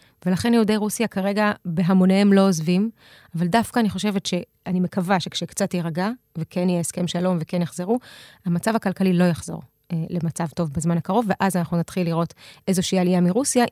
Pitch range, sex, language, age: 175-210 Hz, female, Hebrew, 20-39